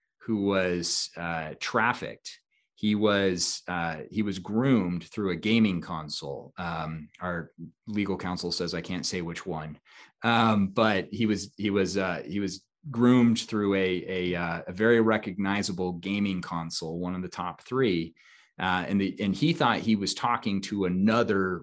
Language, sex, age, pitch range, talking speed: English, male, 30-49, 90-105 Hz, 160 wpm